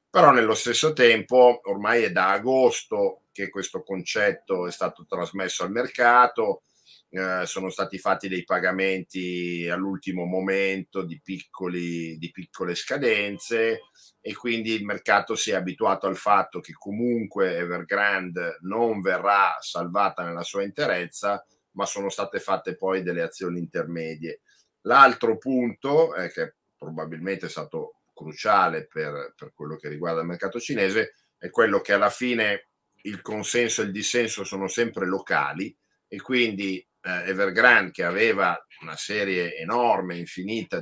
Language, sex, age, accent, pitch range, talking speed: Italian, male, 50-69, native, 90-120 Hz, 140 wpm